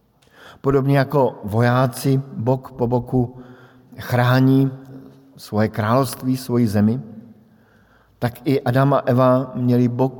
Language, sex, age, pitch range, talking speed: Slovak, male, 50-69, 110-130 Hz, 105 wpm